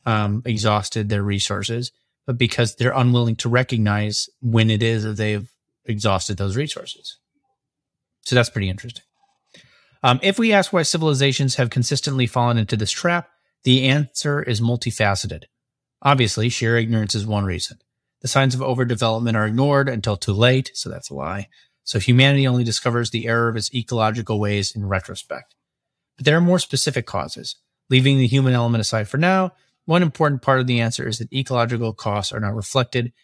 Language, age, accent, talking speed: English, 30-49, American, 170 wpm